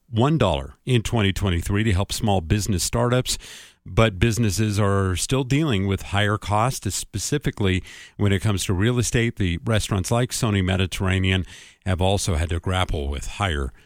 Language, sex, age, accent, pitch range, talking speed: English, male, 50-69, American, 95-120 Hz, 155 wpm